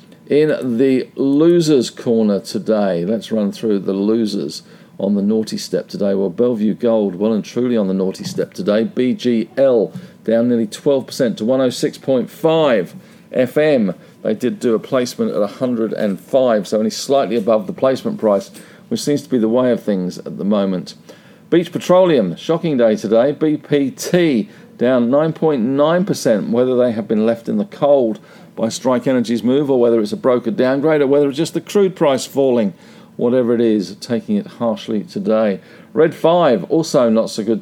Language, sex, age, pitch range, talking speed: English, male, 50-69, 115-165 Hz, 165 wpm